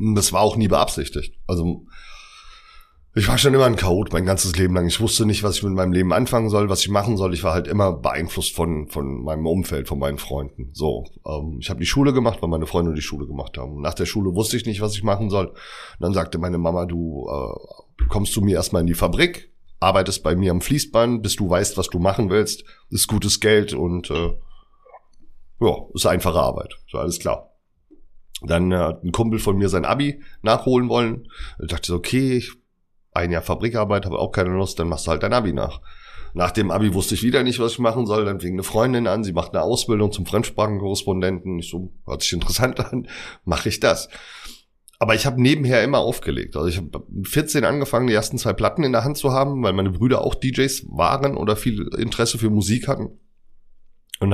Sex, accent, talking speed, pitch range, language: male, German, 220 wpm, 85-115 Hz, German